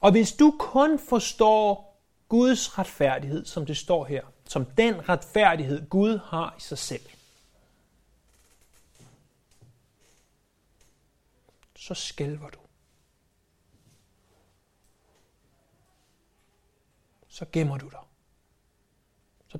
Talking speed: 85 wpm